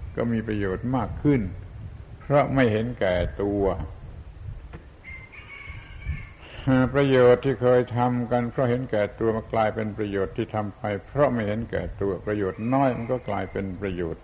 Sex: male